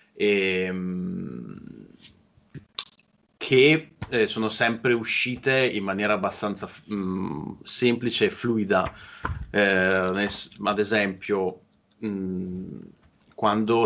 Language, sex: Italian, male